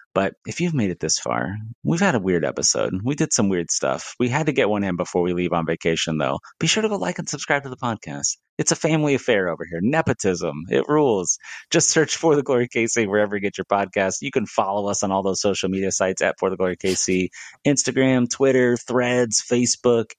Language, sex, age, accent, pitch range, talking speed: English, male, 30-49, American, 95-130 Hz, 230 wpm